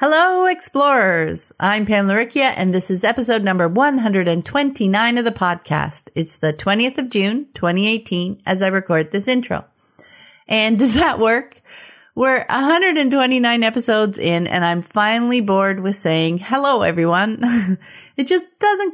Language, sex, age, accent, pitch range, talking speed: English, female, 40-59, American, 185-250 Hz, 140 wpm